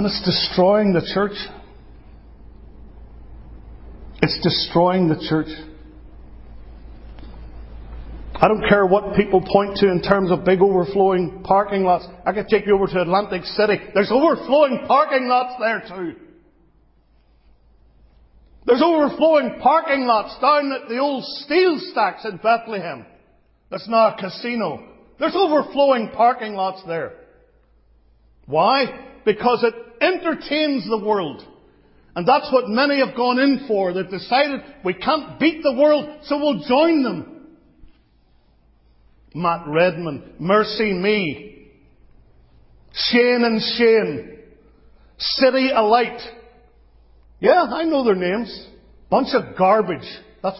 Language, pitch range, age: English, 160-255 Hz, 50-69